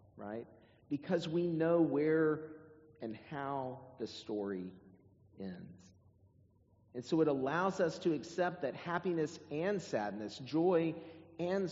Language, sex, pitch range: English, male, 100-145 Hz